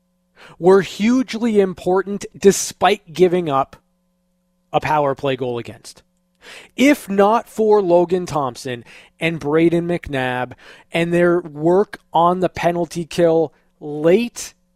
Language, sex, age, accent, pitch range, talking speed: English, male, 20-39, American, 150-190 Hz, 110 wpm